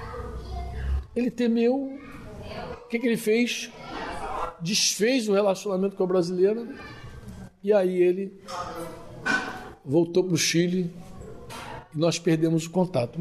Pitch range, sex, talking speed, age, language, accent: 165-215 Hz, male, 115 wpm, 60-79, Portuguese, Brazilian